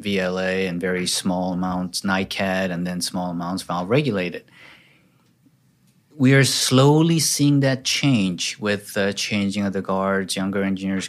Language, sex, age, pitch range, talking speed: English, male, 30-49, 95-115 Hz, 135 wpm